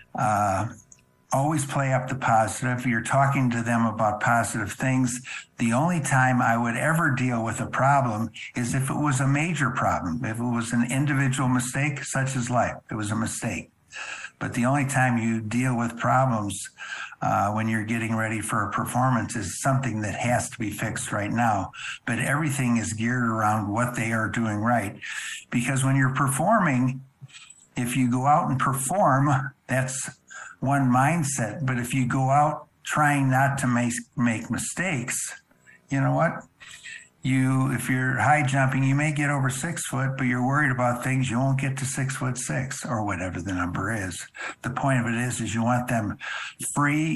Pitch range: 115-135 Hz